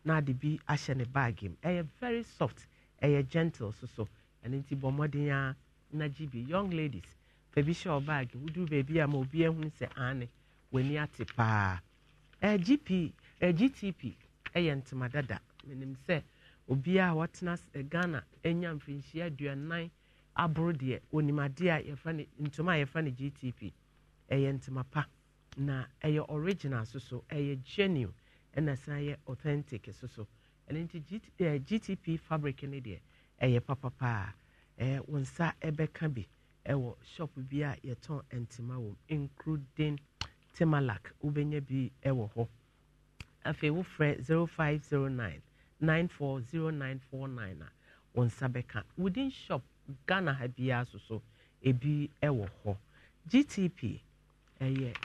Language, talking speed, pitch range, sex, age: English, 135 wpm, 130-155 Hz, male, 50-69